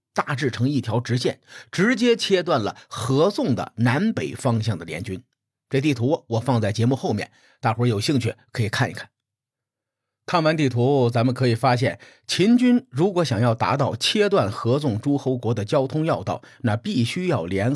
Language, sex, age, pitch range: Chinese, male, 50-69, 115-145 Hz